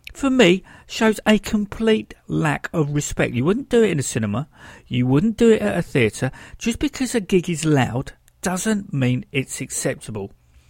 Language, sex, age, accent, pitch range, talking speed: English, male, 50-69, British, 120-180 Hz, 180 wpm